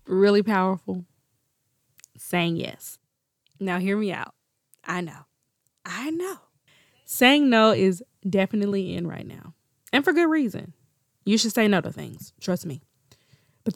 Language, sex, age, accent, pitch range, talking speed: English, female, 20-39, American, 145-220 Hz, 140 wpm